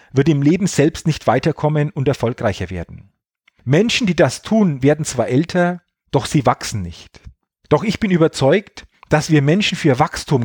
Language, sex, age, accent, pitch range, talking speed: German, male, 40-59, German, 125-175 Hz, 165 wpm